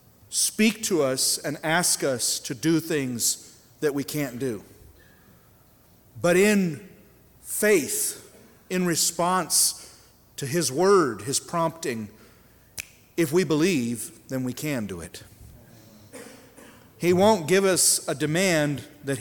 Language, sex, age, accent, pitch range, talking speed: English, male, 40-59, American, 125-170 Hz, 120 wpm